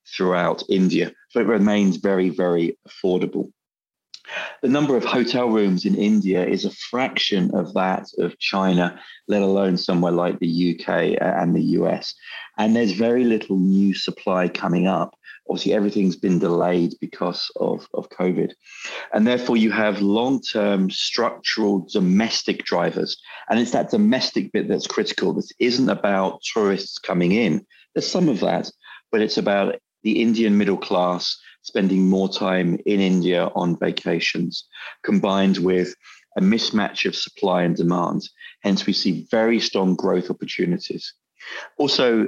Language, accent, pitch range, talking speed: English, British, 90-110 Hz, 145 wpm